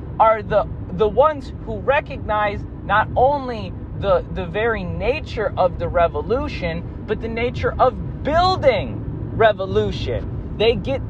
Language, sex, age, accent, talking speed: English, male, 20-39, American, 125 wpm